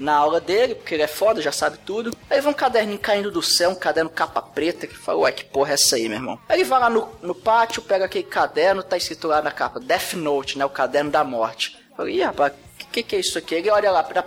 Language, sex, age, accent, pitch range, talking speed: Portuguese, male, 20-39, Brazilian, 175-275 Hz, 280 wpm